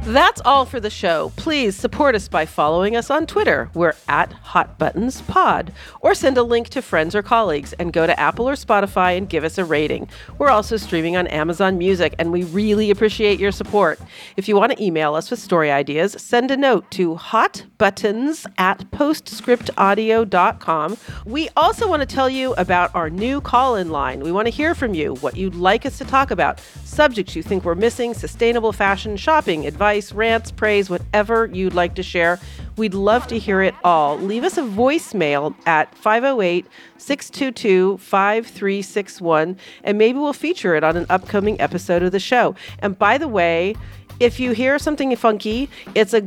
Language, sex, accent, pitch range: English, female, American, 180-240 Hz